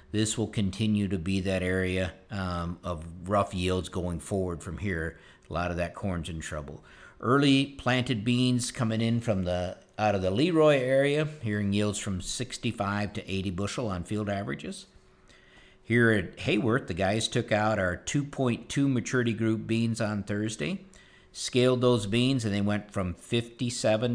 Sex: male